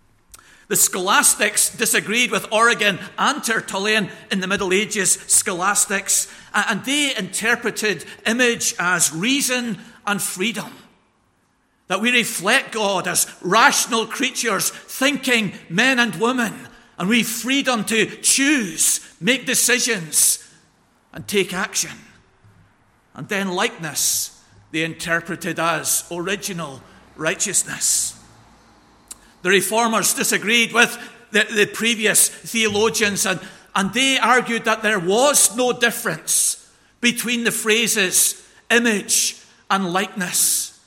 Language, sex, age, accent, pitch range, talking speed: English, male, 50-69, British, 195-235 Hz, 105 wpm